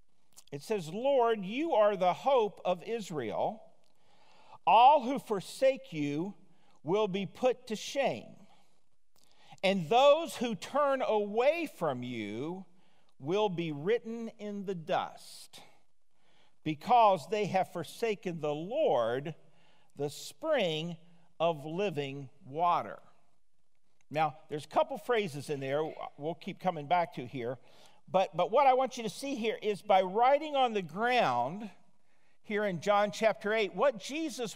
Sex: male